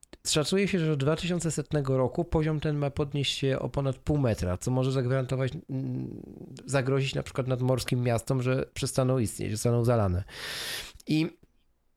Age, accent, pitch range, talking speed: 40-59, native, 115-155 Hz, 150 wpm